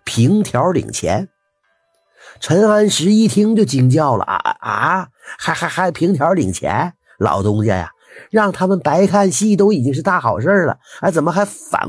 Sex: male